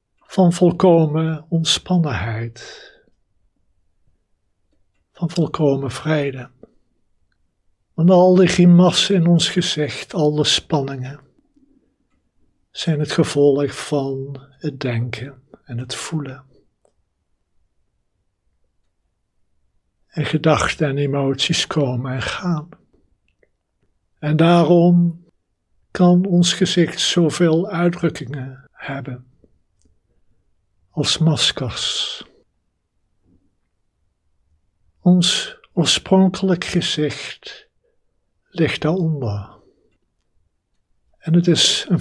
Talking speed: 70 wpm